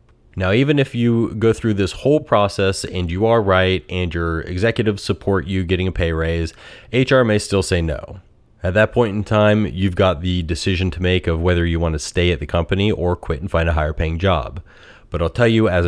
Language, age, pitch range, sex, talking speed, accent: English, 30-49, 85-100 Hz, male, 225 wpm, American